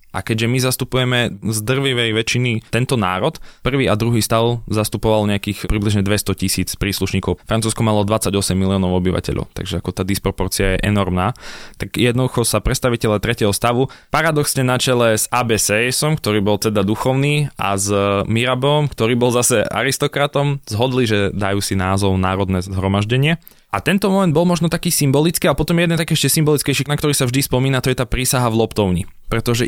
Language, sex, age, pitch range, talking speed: Slovak, male, 20-39, 105-130 Hz, 170 wpm